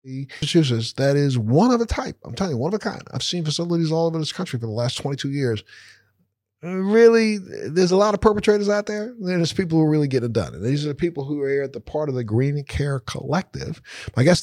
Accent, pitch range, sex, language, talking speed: American, 130-175 Hz, male, English, 245 wpm